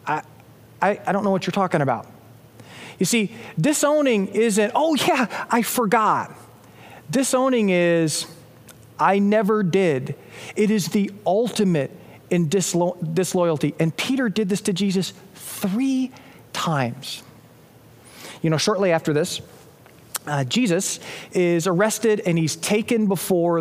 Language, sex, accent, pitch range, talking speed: English, male, American, 160-215 Hz, 120 wpm